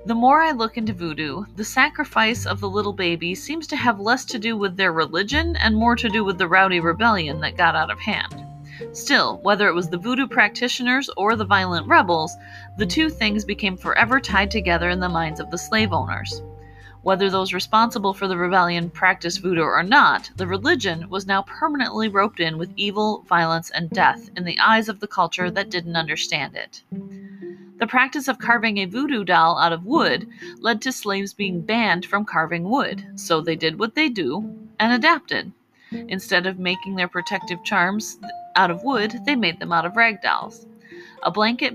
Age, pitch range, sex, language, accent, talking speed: 30-49, 175-230 Hz, female, English, American, 195 wpm